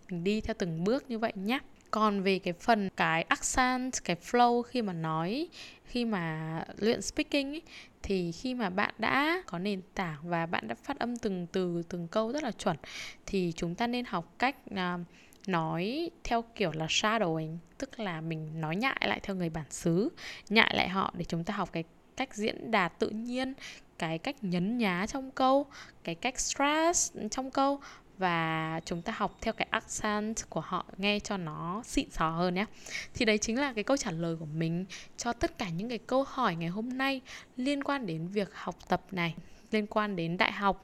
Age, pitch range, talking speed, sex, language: 10-29, 175-240 Hz, 205 wpm, female, Vietnamese